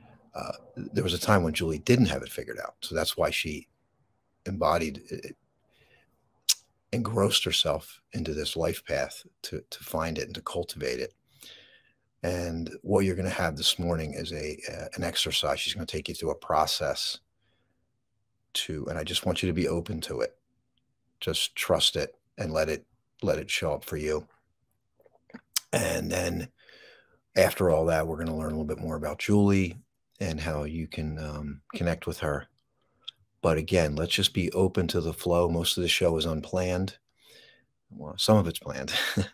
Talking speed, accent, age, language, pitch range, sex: 185 wpm, American, 50-69, English, 80-95 Hz, male